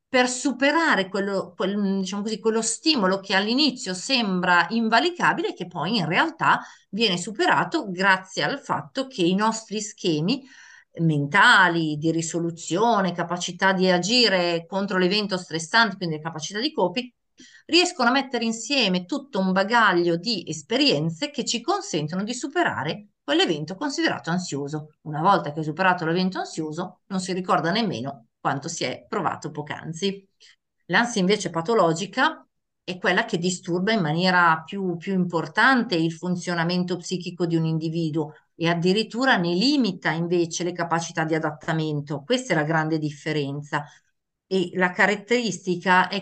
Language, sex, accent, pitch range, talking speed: Italian, female, native, 170-230 Hz, 135 wpm